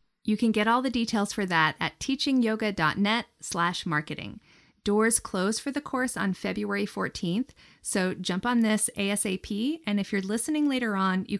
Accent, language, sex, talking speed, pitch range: American, English, female, 170 wpm, 180-230 Hz